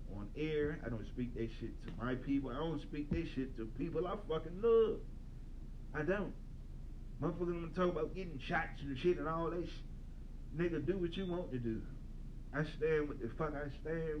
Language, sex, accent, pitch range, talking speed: English, male, American, 120-160 Hz, 200 wpm